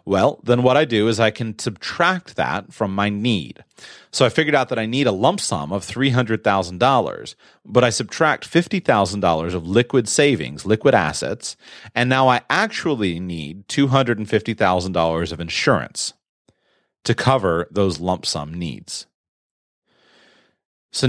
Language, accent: English, American